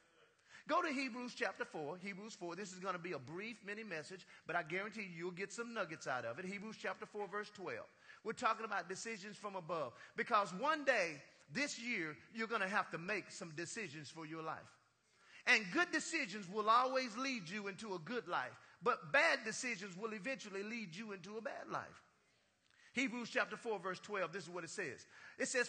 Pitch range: 210-275 Hz